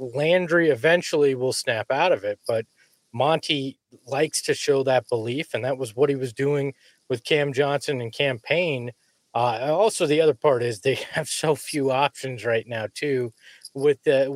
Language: English